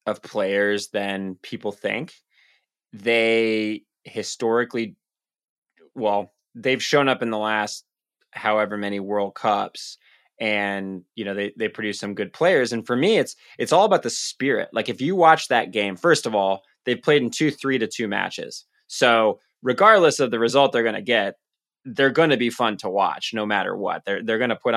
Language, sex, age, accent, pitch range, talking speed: English, male, 20-39, American, 105-120 Hz, 185 wpm